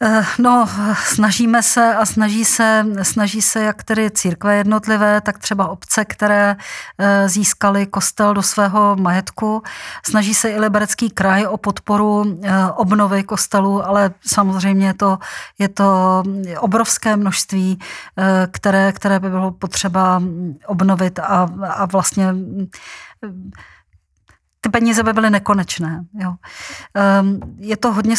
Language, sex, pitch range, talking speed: Czech, female, 195-215 Hz, 110 wpm